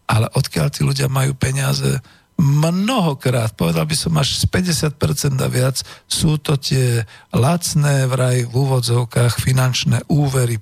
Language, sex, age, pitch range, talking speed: Slovak, male, 50-69, 110-140 Hz, 135 wpm